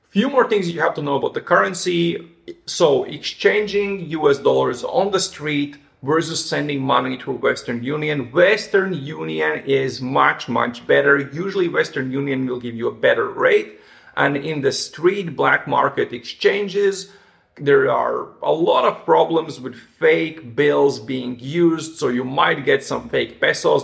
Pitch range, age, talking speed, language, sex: 140-205 Hz, 30-49, 160 wpm, English, male